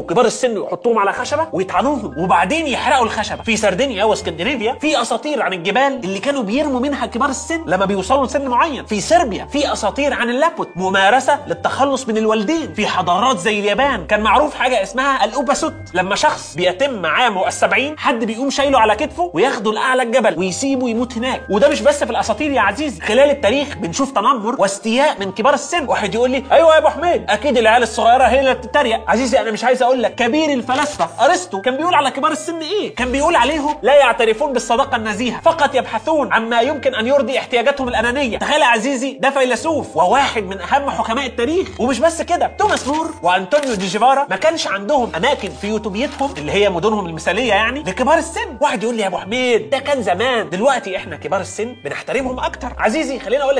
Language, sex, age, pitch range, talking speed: Arabic, male, 30-49, 220-285 Hz, 185 wpm